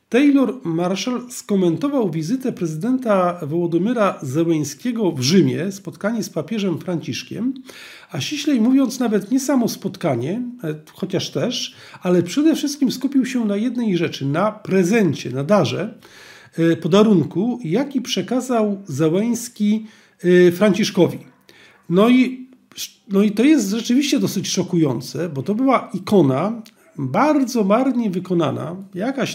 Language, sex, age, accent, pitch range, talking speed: Polish, male, 40-59, native, 170-240 Hz, 115 wpm